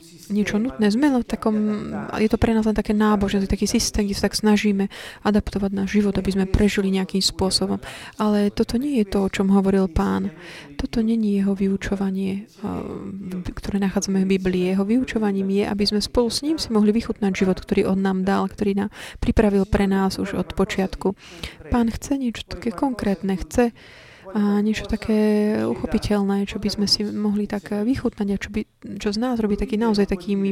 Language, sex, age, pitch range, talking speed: Slovak, female, 20-39, 195-220 Hz, 185 wpm